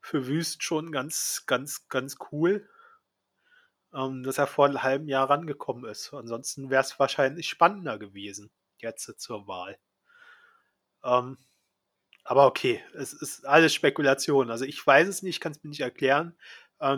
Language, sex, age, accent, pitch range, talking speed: German, male, 30-49, German, 130-160 Hz, 140 wpm